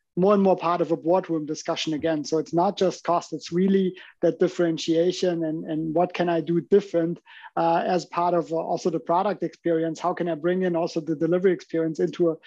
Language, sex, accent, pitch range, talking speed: English, male, German, 165-180 Hz, 210 wpm